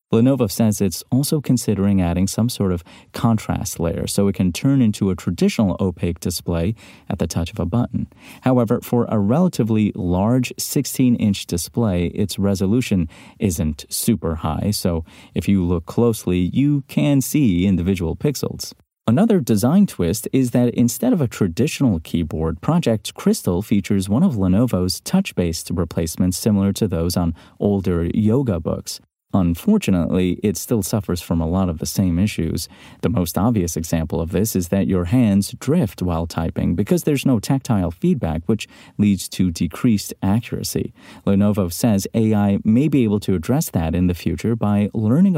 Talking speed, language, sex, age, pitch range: 160 wpm, English, male, 30-49, 90-120 Hz